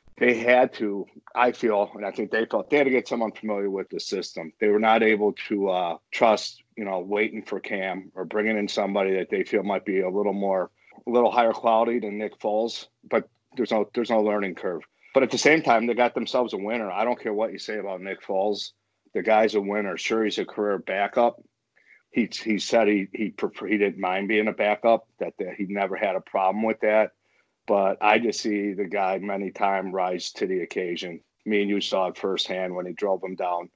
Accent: American